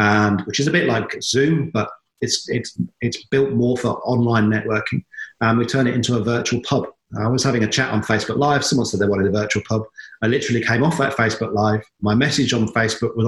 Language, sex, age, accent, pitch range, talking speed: English, male, 40-59, British, 110-130 Hz, 235 wpm